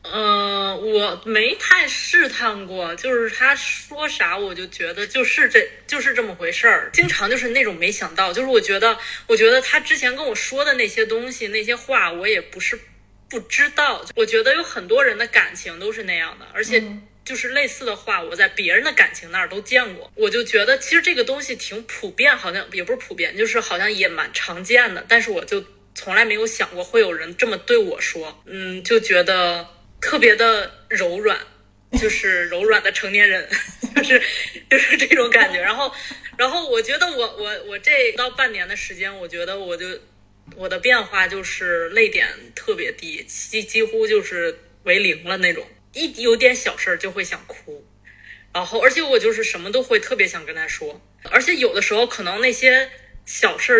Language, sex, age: Chinese, female, 20-39